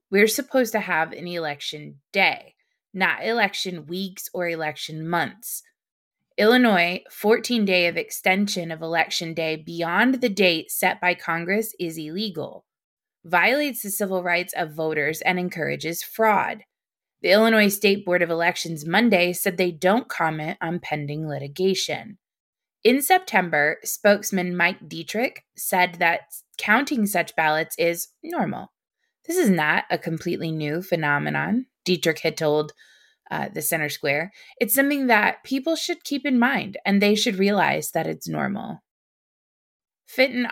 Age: 20-39